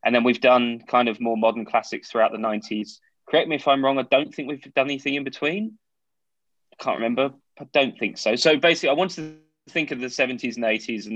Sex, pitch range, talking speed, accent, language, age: male, 105-135 Hz, 240 wpm, British, English, 20-39